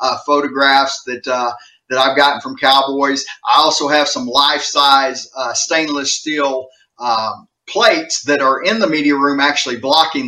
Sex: male